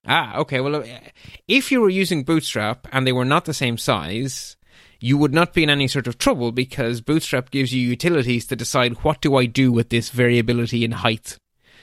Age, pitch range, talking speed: 30-49, 120-150 Hz, 205 wpm